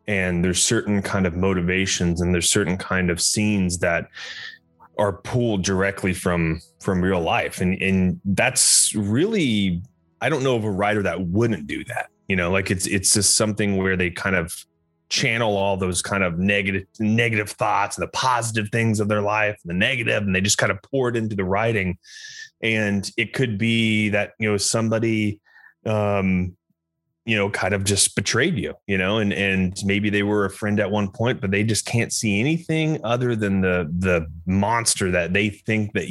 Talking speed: 195 wpm